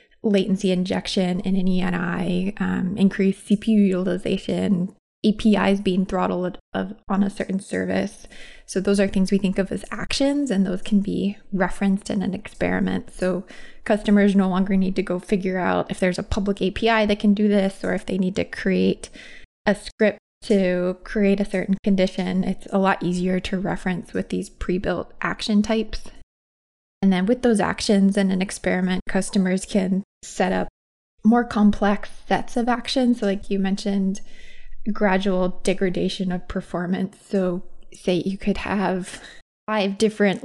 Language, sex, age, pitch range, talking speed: English, female, 20-39, 185-205 Hz, 160 wpm